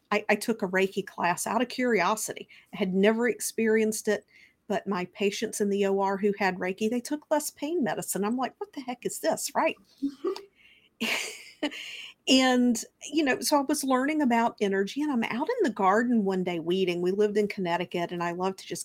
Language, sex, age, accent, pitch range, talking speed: English, female, 50-69, American, 195-240 Hz, 200 wpm